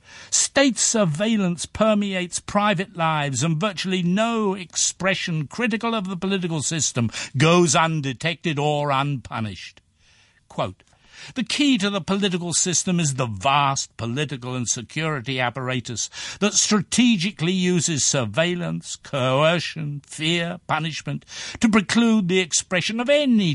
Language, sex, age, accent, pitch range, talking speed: English, male, 60-79, British, 130-195 Hz, 115 wpm